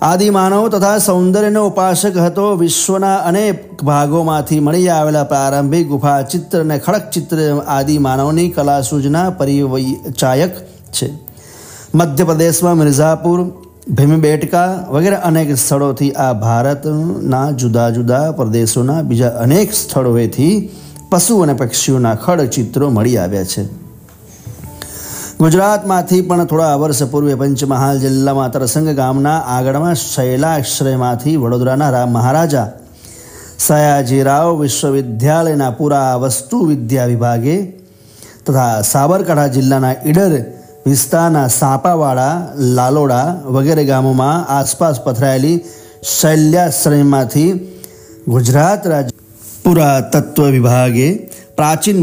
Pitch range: 130-165 Hz